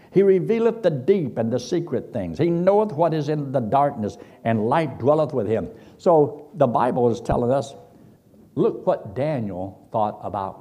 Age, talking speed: 60-79, 175 wpm